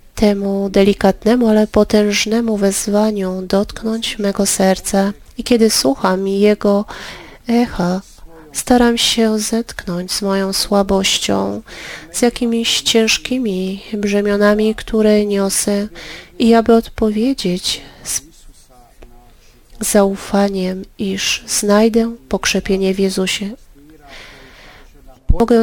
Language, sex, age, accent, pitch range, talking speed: Polish, female, 30-49, native, 190-220 Hz, 85 wpm